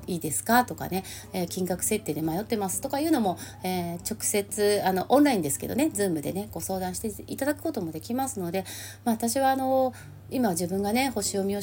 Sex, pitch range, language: female, 180-240 Hz, Japanese